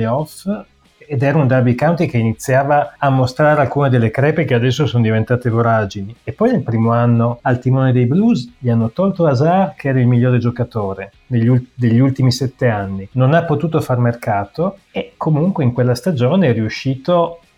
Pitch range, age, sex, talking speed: 115-145 Hz, 30-49, male, 180 wpm